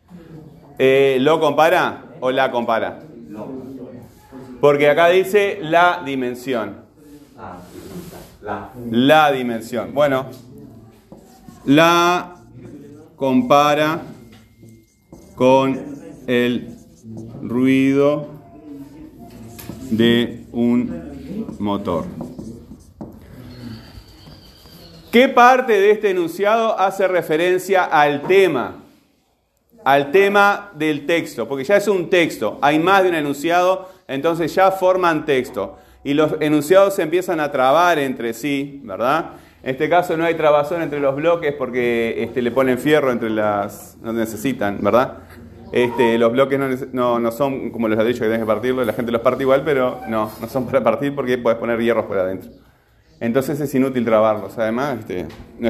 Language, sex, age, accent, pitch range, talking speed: Spanish, male, 30-49, Argentinian, 115-155 Hz, 125 wpm